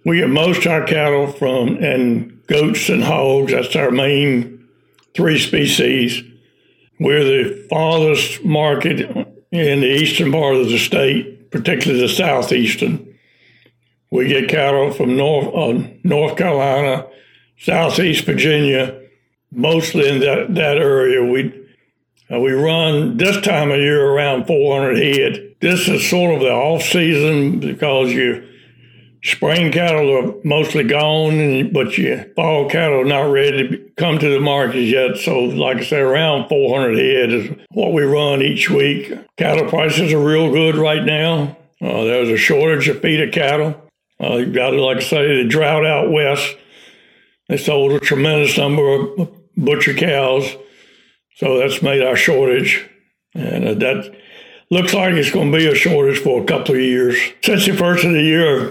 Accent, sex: American, male